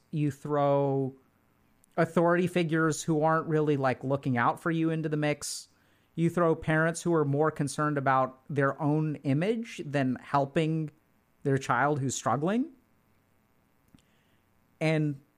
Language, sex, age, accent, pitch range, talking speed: English, male, 40-59, American, 130-160 Hz, 130 wpm